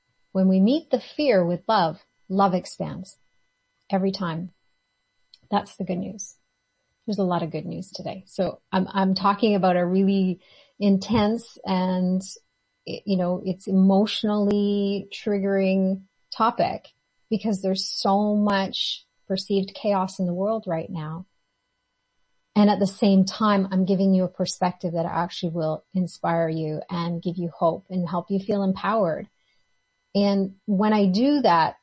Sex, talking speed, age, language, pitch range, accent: female, 145 wpm, 30-49, English, 170-200 Hz, American